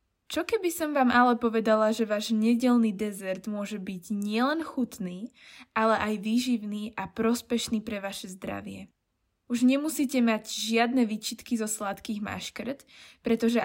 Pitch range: 210-255 Hz